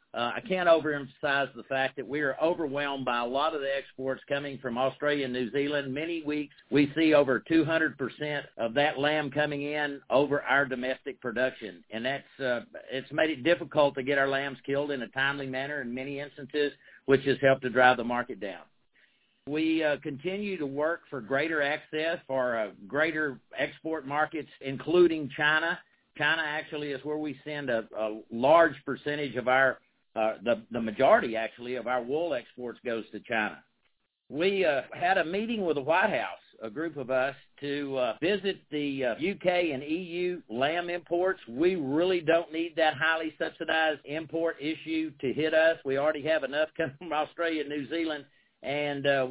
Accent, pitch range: American, 135-155 Hz